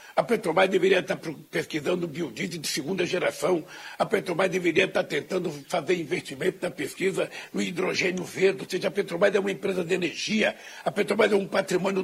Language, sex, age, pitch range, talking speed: Portuguese, male, 60-79, 185-210 Hz, 175 wpm